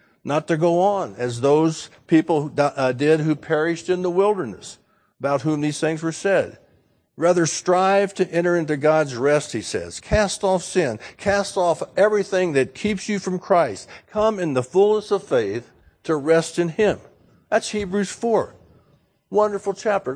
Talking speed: 160 wpm